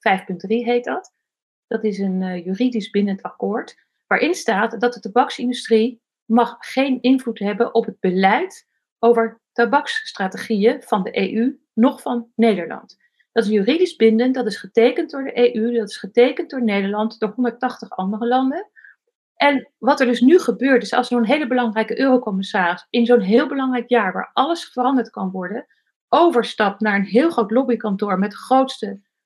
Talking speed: 160 wpm